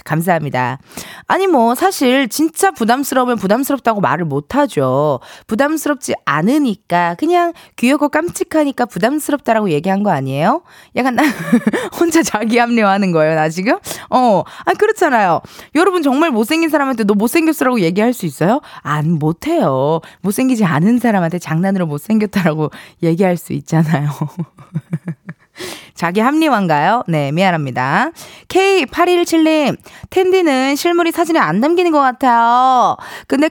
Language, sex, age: Korean, female, 20-39